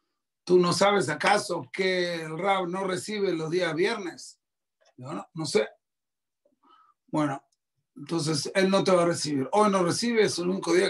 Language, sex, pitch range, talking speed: Spanish, male, 155-195 Hz, 170 wpm